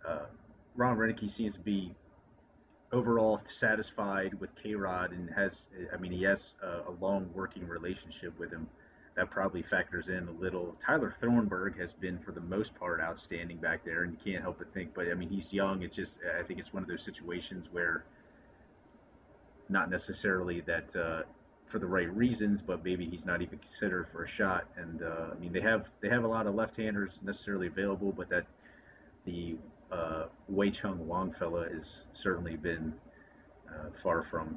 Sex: male